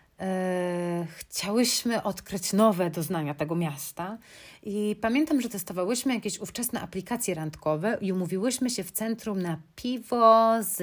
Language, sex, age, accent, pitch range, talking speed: Polish, female, 30-49, native, 180-225 Hz, 120 wpm